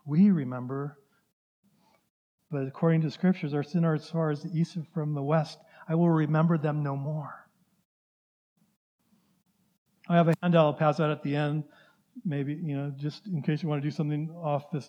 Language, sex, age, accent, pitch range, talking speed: English, male, 50-69, American, 155-190 Hz, 185 wpm